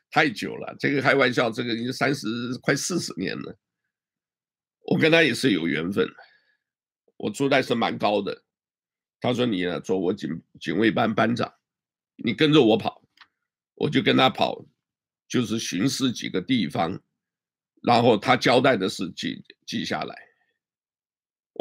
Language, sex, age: Chinese, male, 50-69